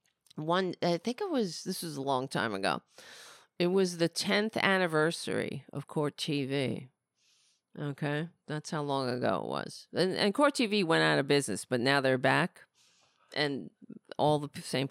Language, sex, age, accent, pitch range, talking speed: English, female, 40-59, American, 140-180 Hz, 170 wpm